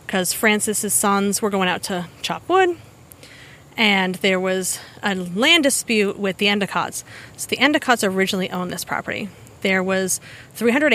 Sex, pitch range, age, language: female, 190-235 Hz, 30-49, English